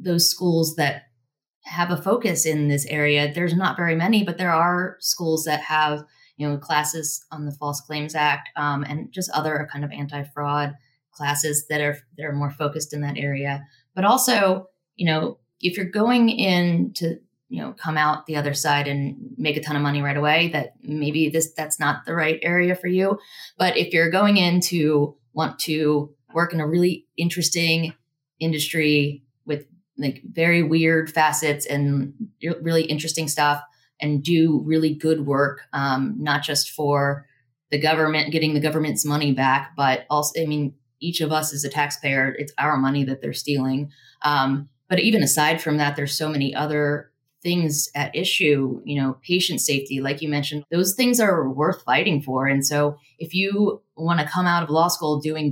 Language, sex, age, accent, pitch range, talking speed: English, female, 20-39, American, 145-170 Hz, 185 wpm